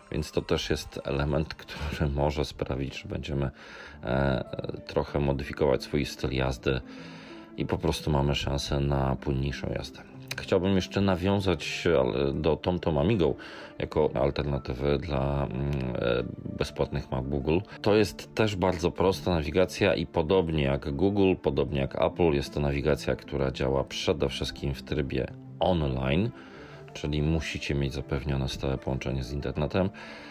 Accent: native